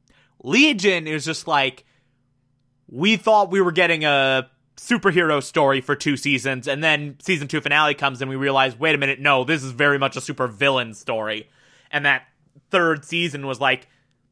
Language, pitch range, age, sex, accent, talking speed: English, 130-165 Hz, 20-39, male, American, 175 wpm